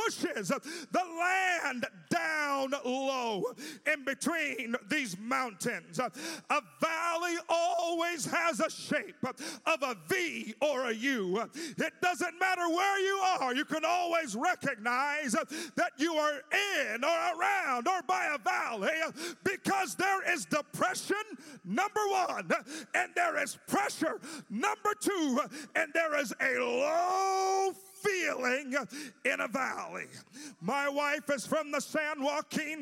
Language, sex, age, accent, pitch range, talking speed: English, male, 40-59, American, 275-340 Hz, 125 wpm